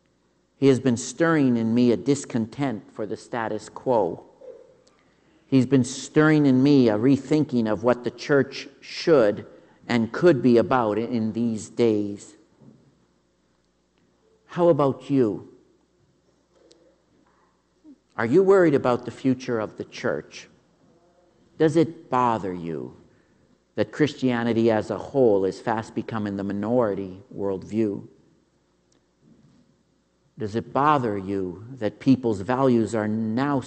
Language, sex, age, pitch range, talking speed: English, male, 50-69, 110-145 Hz, 120 wpm